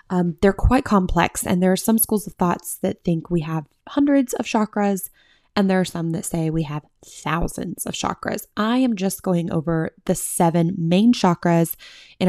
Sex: female